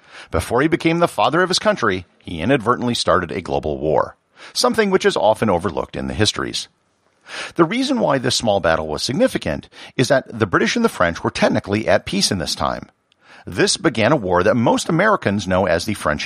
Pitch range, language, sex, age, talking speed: 95-150 Hz, English, male, 50-69, 205 wpm